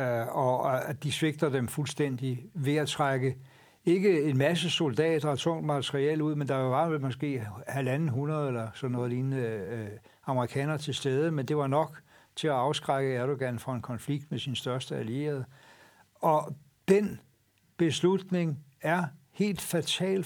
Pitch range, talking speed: 135-170 Hz, 150 wpm